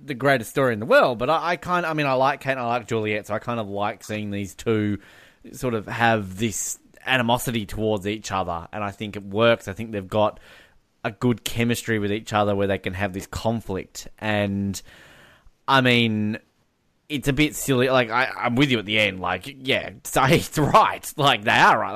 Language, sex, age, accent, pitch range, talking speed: English, male, 20-39, Australian, 100-125 Hz, 220 wpm